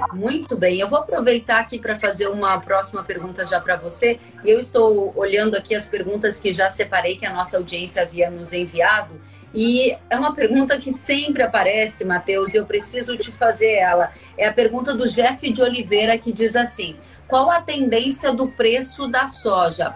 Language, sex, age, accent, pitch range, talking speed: Portuguese, female, 30-49, Brazilian, 205-255 Hz, 185 wpm